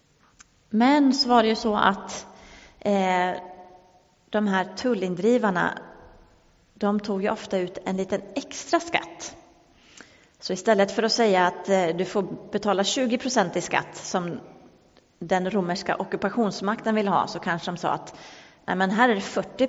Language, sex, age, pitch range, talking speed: English, female, 30-49, 190-240 Hz, 150 wpm